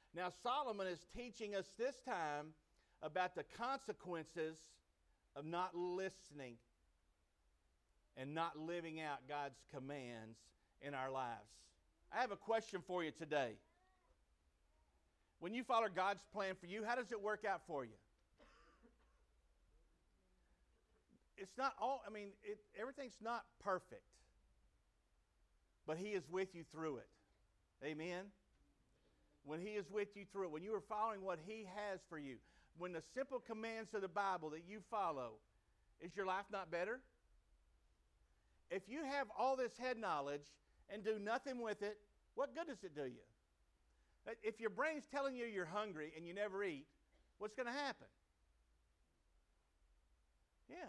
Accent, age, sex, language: American, 50-69, male, French